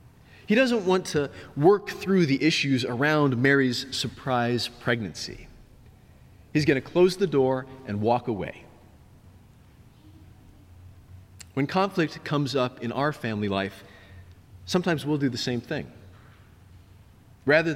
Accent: American